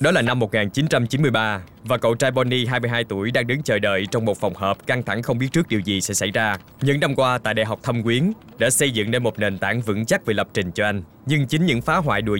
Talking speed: 270 wpm